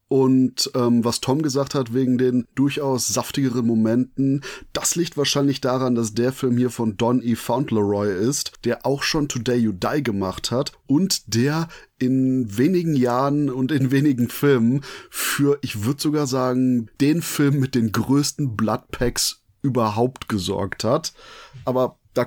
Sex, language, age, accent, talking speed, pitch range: male, German, 30-49, German, 155 wpm, 120-145 Hz